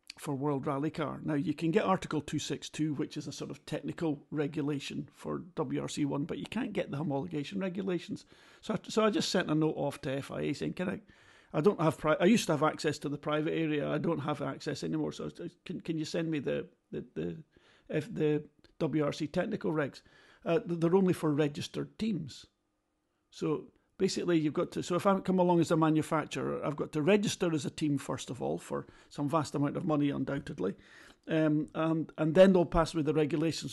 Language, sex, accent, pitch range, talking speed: English, male, British, 150-175 Hz, 210 wpm